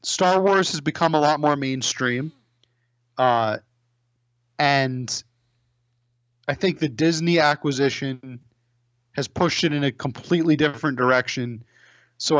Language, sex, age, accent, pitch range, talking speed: English, male, 30-49, American, 120-150 Hz, 115 wpm